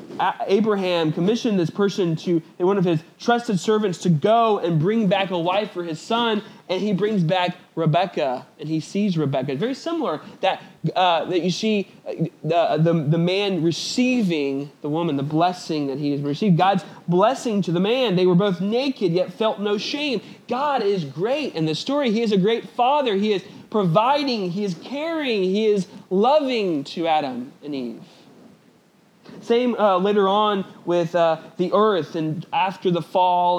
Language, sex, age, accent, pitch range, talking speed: English, male, 30-49, American, 170-210 Hz, 175 wpm